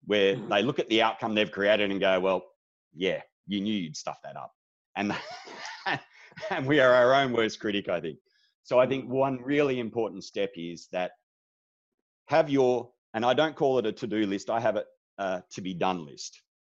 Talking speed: 190 wpm